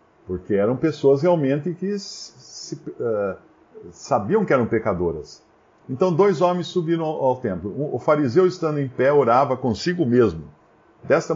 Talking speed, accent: 125 wpm, Brazilian